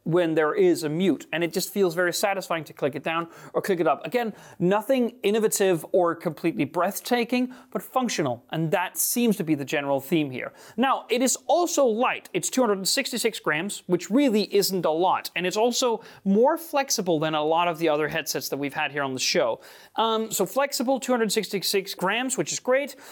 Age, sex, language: 30-49, male, Italian